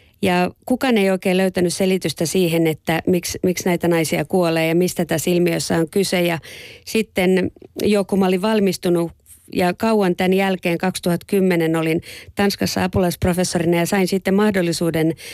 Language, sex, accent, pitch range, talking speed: Finnish, female, native, 165-190 Hz, 145 wpm